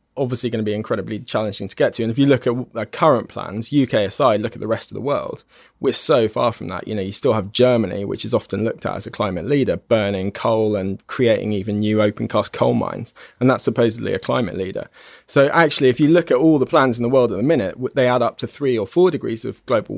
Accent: British